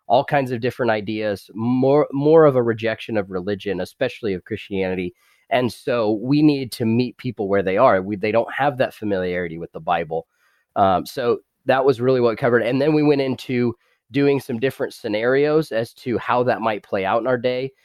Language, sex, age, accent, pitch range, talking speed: English, male, 20-39, American, 105-135 Hz, 200 wpm